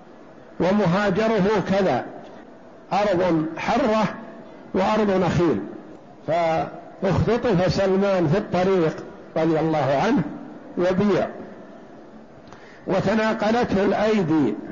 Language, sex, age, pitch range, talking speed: Arabic, male, 60-79, 180-210 Hz, 65 wpm